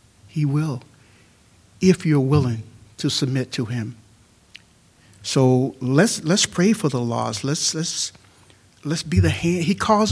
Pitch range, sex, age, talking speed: 110-155 Hz, male, 60-79, 140 wpm